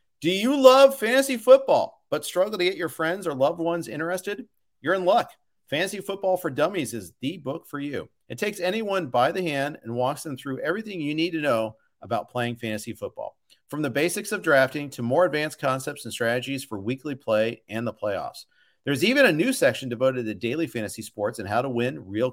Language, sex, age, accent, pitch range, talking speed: English, male, 50-69, American, 125-175 Hz, 210 wpm